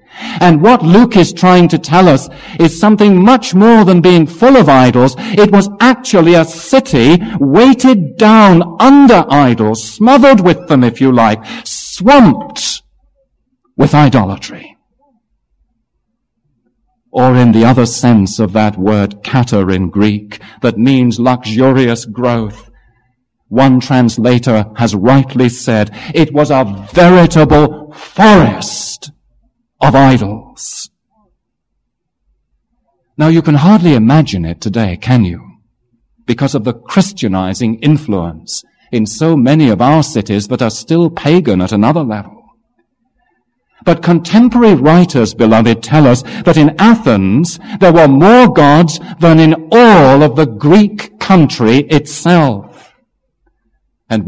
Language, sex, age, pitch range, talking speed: English, male, 50-69, 115-185 Hz, 125 wpm